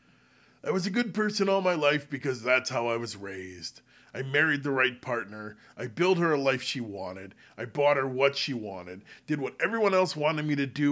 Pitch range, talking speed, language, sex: 130-185 Hz, 220 wpm, English, male